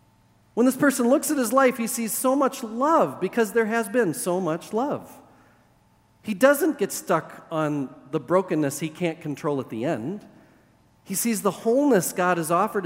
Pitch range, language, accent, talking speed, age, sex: 130-195 Hz, English, American, 180 wpm, 40-59, male